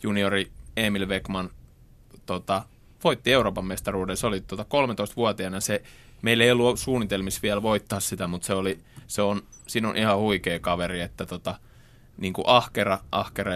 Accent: native